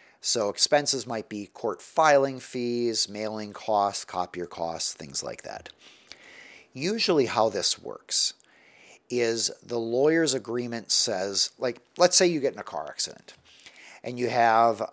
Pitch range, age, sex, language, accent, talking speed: 110-145 Hz, 50-69, male, English, American, 140 wpm